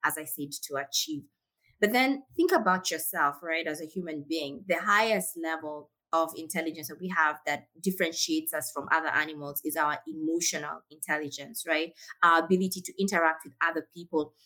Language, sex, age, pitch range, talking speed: English, female, 20-39, 155-195 Hz, 170 wpm